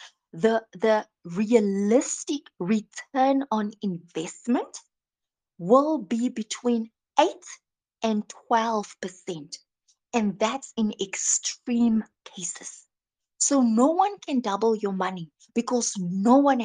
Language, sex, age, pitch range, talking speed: English, female, 20-39, 195-260 Hz, 100 wpm